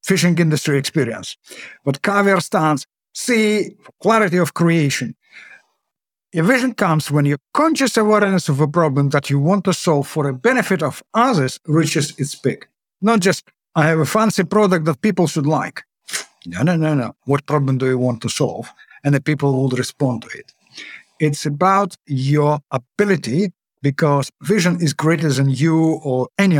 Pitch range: 135-180 Hz